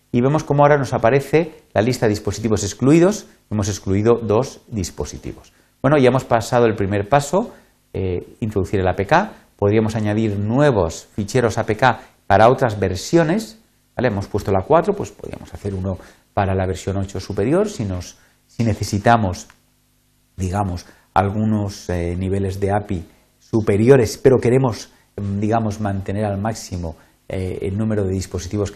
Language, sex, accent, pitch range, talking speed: Spanish, male, Spanish, 100-130 Hz, 140 wpm